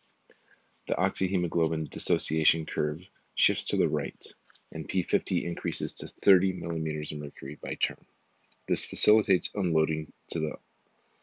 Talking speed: 125 wpm